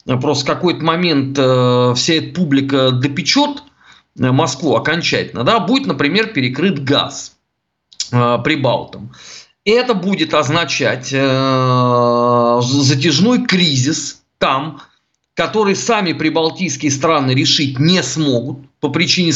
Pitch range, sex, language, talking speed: 135-175 Hz, male, Russian, 95 wpm